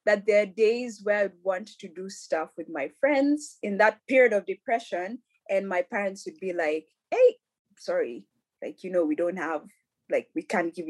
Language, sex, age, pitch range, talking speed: English, female, 20-39, 185-270 Hz, 200 wpm